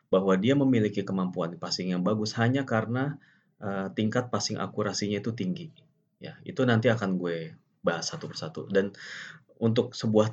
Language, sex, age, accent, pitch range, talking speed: Indonesian, male, 30-49, native, 95-120 Hz, 150 wpm